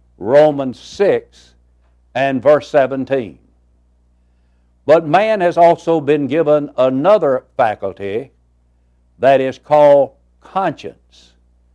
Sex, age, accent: male, 60-79, American